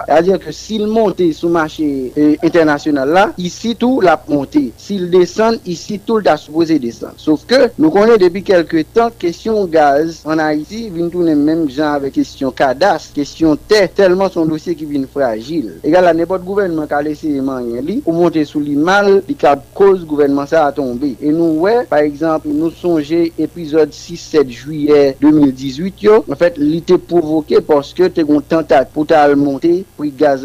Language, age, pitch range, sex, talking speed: French, 50-69, 155-200 Hz, male, 190 wpm